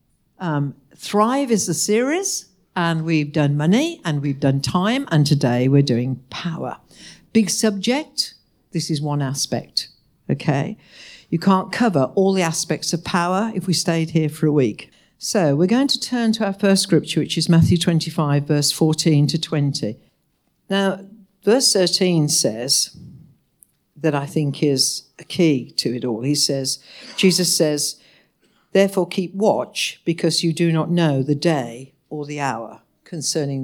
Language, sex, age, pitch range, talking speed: English, female, 60-79, 145-195 Hz, 155 wpm